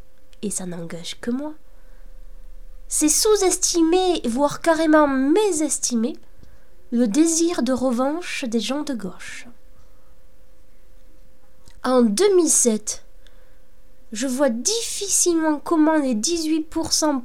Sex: female